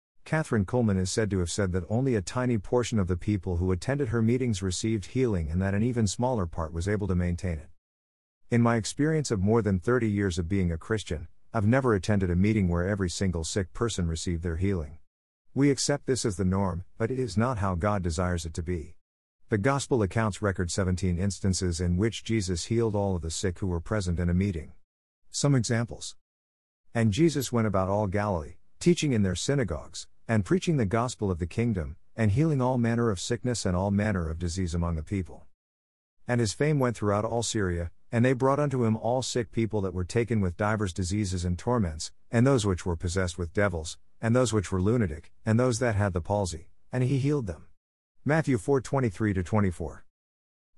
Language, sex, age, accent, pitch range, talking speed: English, male, 50-69, American, 90-115 Hz, 205 wpm